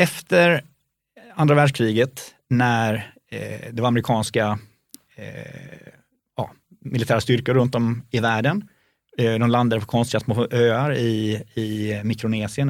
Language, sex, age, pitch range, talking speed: Swedish, male, 30-49, 115-140 Hz, 125 wpm